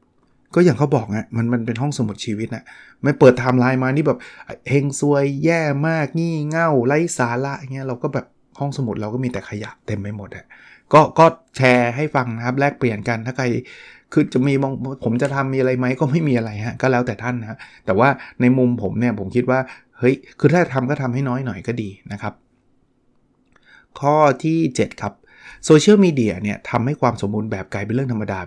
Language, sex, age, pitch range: Thai, male, 20-39, 115-140 Hz